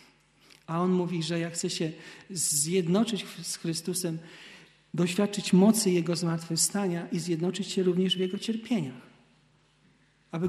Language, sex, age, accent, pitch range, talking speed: Polish, male, 40-59, native, 155-180 Hz, 125 wpm